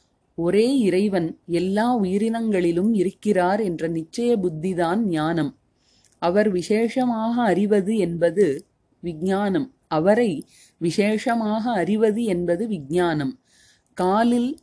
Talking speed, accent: 80 wpm, native